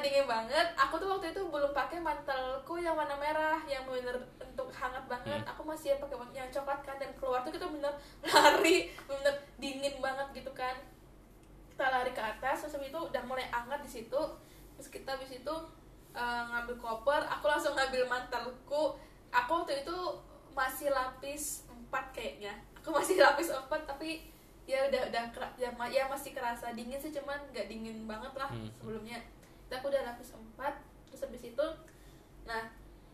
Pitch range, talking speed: 245-290 Hz, 165 wpm